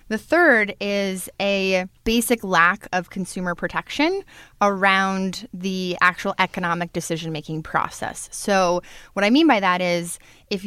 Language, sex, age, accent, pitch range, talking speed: English, female, 20-39, American, 185-225 Hz, 130 wpm